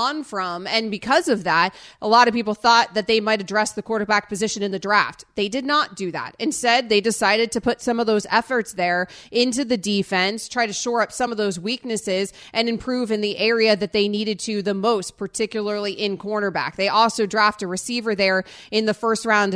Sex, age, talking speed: female, 30-49, 215 wpm